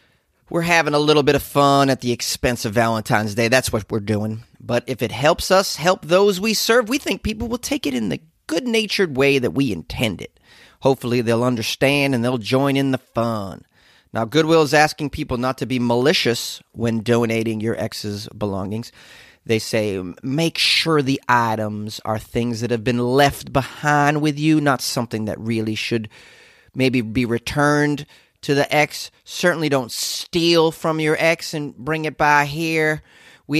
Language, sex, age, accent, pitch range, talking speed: English, male, 30-49, American, 120-155 Hz, 180 wpm